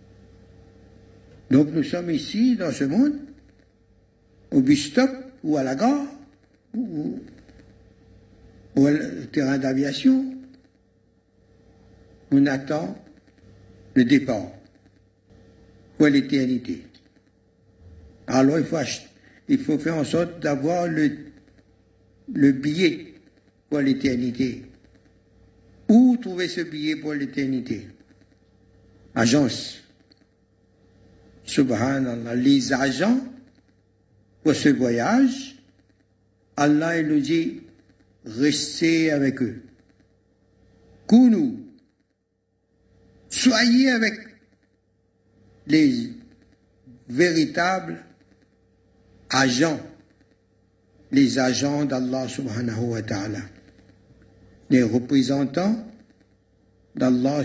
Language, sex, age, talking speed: French, male, 60-79, 80 wpm